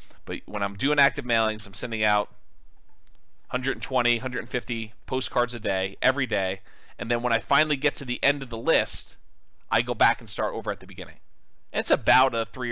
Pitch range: 100-125 Hz